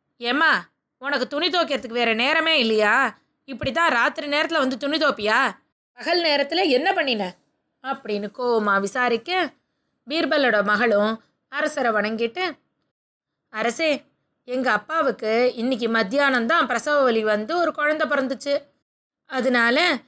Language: Tamil